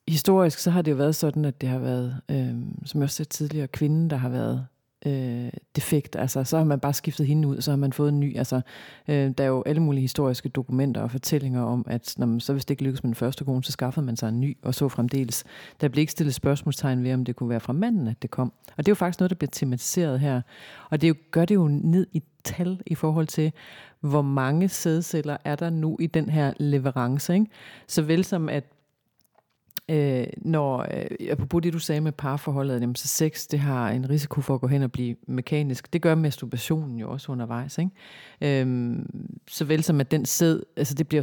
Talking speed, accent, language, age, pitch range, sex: 230 wpm, native, Danish, 40-59, 130-155 Hz, female